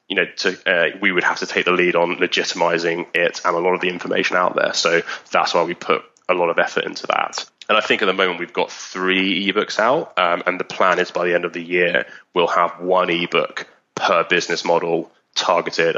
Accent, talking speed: British, 235 wpm